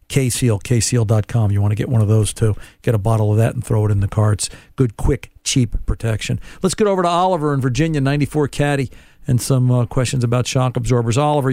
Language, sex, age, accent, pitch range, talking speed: English, male, 50-69, American, 110-140 Hz, 220 wpm